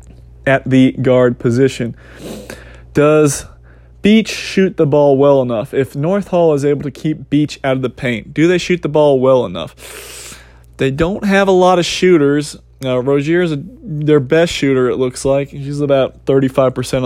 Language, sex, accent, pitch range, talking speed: English, male, American, 125-160 Hz, 175 wpm